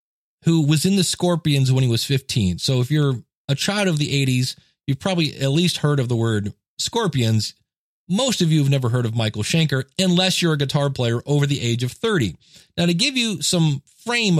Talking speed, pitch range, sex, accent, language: 215 wpm, 125-165 Hz, male, American, English